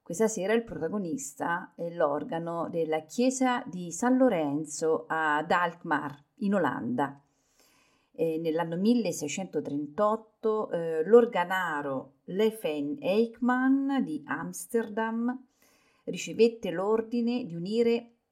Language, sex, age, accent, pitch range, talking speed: Italian, female, 40-59, native, 160-245 Hz, 90 wpm